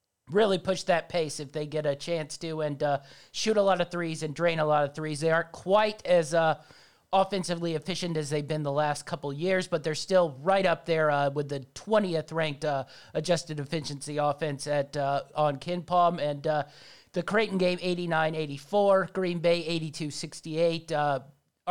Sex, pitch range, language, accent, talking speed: male, 150-185 Hz, English, American, 190 wpm